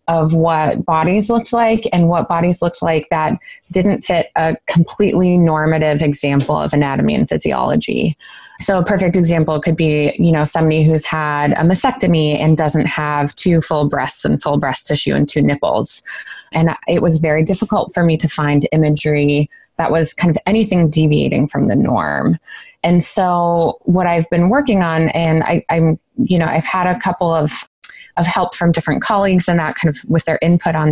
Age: 20-39